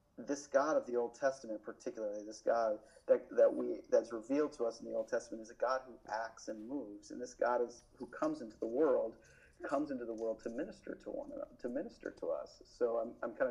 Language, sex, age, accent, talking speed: English, male, 40-59, American, 235 wpm